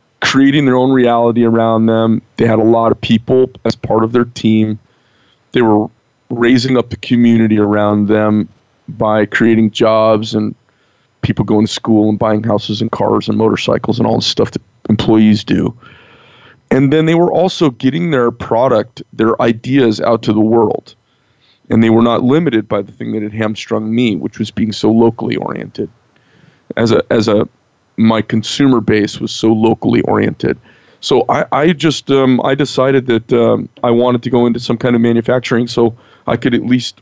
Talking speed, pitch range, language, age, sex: 185 wpm, 110-125 Hz, English, 30-49, male